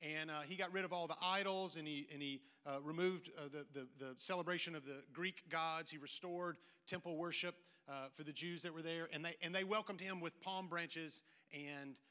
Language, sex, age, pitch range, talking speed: English, male, 40-59, 150-195 Hz, 225 wpm